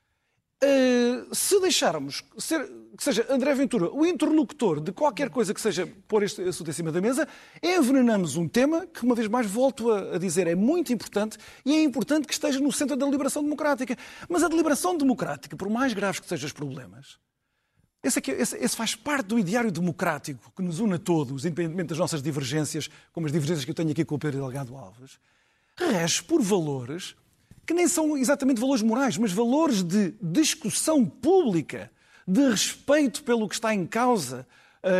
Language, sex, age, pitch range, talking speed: Portuguese, male, 40-59, 180-280 Hz, 185 wpm